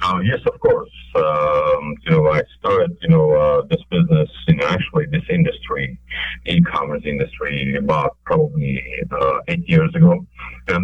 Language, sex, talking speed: English, male, 160 wpm